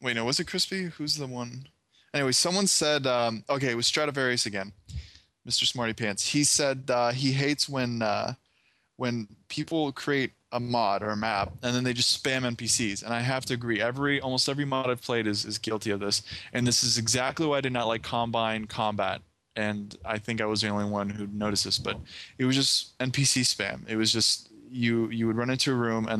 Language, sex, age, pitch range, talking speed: English, male, 20-39, 105-125 Hz, 220 wpm